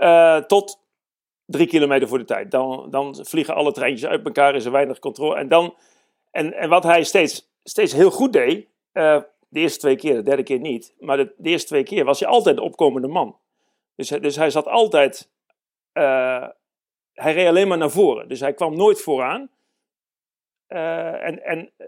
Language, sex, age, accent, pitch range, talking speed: Dutch, male, 50-69, Dutch, 140-225 Hz, 190 wpm